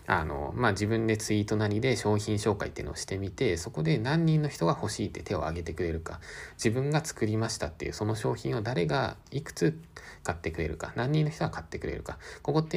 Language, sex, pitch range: Japanese, male, 80-110 Hz